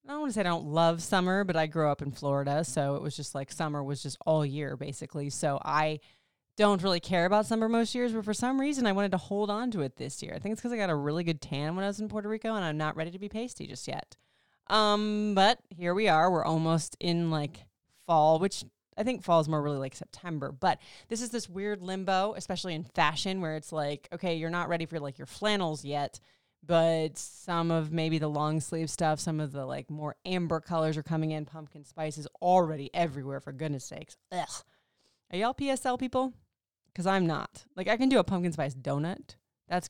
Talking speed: 235 wpm